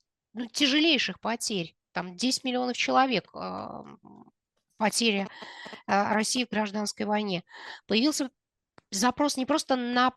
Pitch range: 210-260 Hz